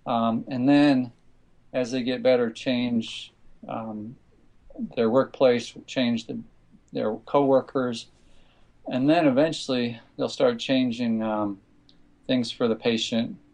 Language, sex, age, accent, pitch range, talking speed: English, male, 40-59, American, 115-135 Hz, 115 wpm